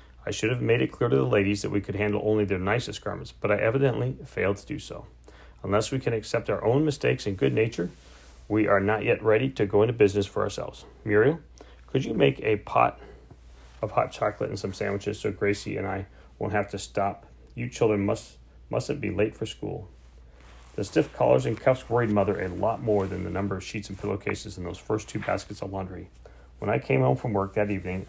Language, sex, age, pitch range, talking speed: English, male, 30-49, 90-110 Hz, 225 wpm